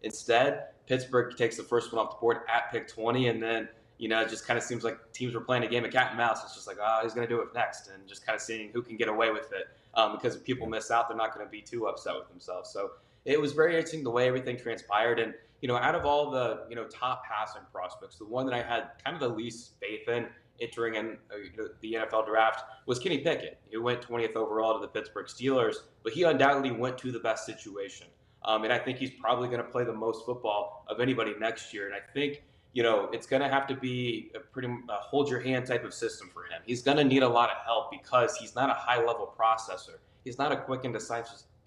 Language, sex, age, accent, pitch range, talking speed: English, male, 20-39, American, 110-130 Hz, 260 wpm